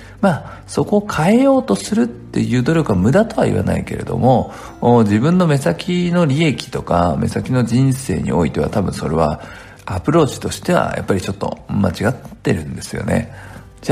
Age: 50-69